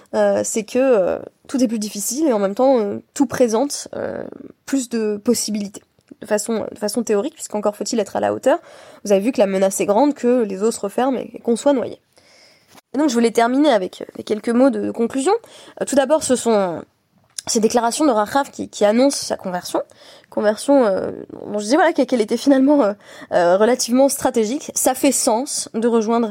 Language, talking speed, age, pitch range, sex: French, 210 wpm, 20-39, 215-280 Hz, female